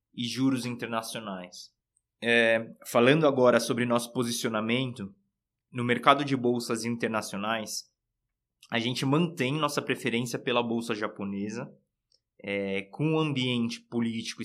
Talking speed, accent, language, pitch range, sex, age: 105 wpm, Brazilian, Portuguese, 110-125 Hz, male, 20-39